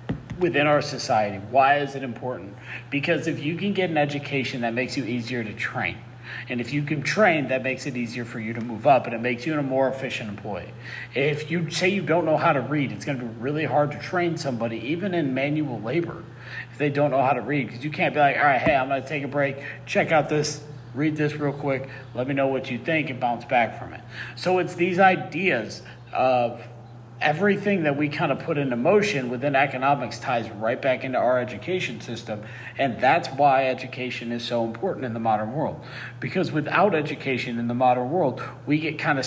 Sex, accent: male, American